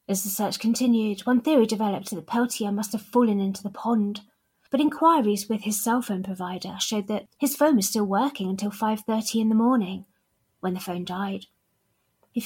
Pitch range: 200-240 Hz